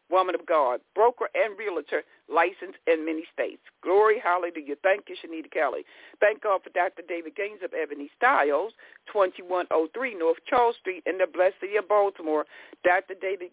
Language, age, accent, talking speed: English, 60-79, American, 165 wpm